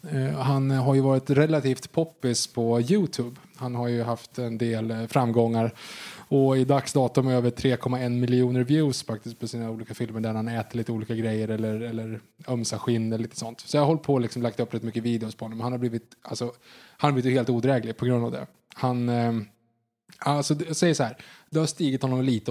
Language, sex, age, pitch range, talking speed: Swedish, male, 20-39, 115-135 Hz, 215 wpm